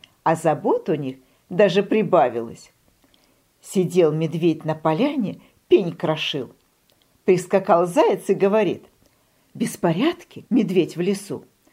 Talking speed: 100 wpm